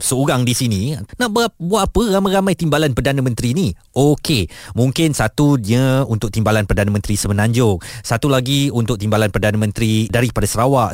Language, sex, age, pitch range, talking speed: Malay, male, 30-49, 120-175 Hz, 155 wpm